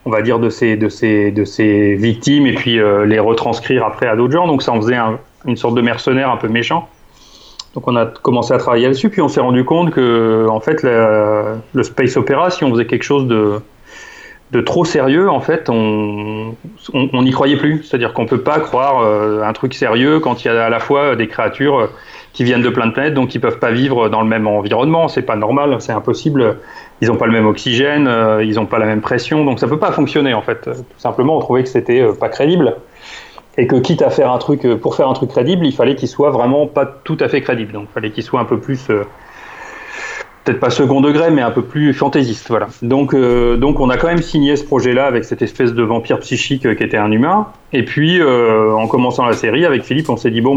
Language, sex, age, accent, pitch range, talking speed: French, male, 30-49, French, 115-145 Hz, 240 wpm